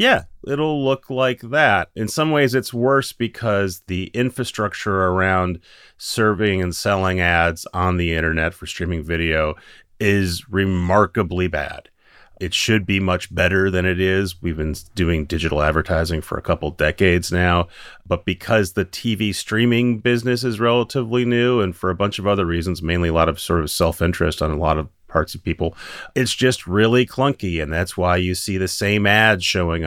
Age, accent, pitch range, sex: 30-49, American, 80-105 Hz, male